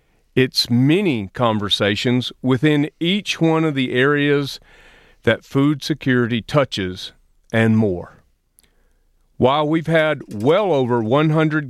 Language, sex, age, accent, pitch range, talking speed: English, male, 40-59, American, 120-160 Hz, 110 wpm